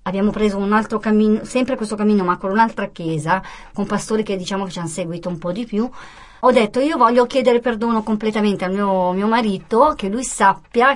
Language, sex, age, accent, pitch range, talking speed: Italian, male, 40-59, native, 175-225 Hz, 210 wpm